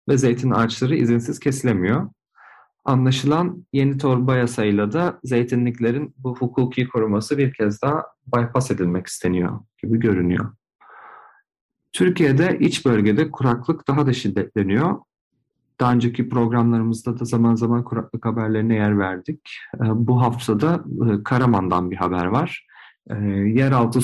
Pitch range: 110-130 Hz